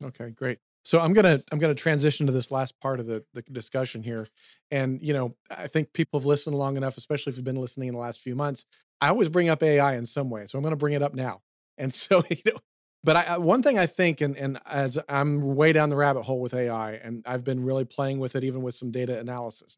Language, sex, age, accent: English, male, 40-59, American